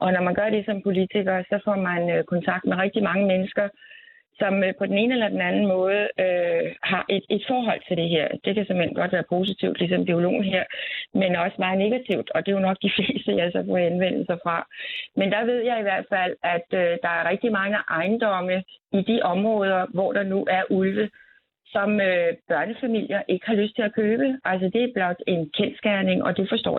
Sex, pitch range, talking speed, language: female, 180-215 Hz, 210 wpm, Danish